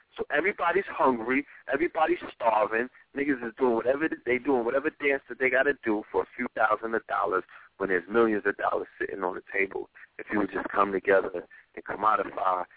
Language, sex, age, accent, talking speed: English, male, 30-49, American, 195 wpm